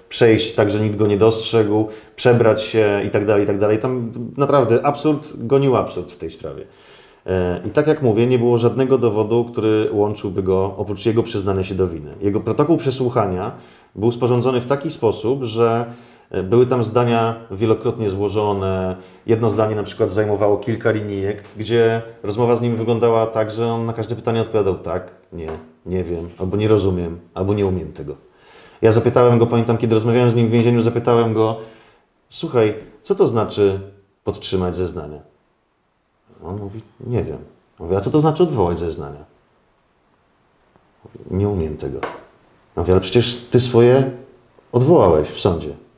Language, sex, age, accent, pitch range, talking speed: Polish, male, 40-59, native, 100-120 Hz, 165 wpm